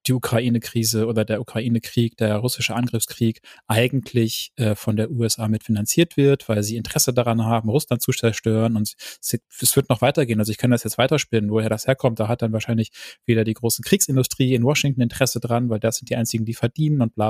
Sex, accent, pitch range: male, German, 115-140 Hz